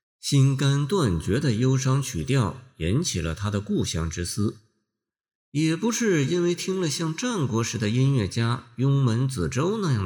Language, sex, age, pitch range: Chinese, male, 50-69, 95-140 Hz